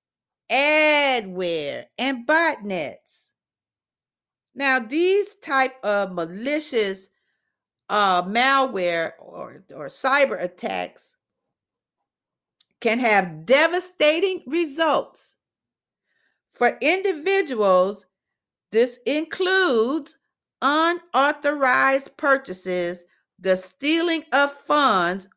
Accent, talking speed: American, 65 wpm